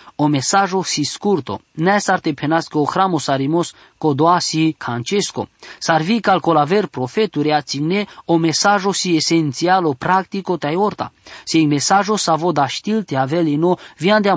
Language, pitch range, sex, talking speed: English, 140-185 Hz, male, 155 wpm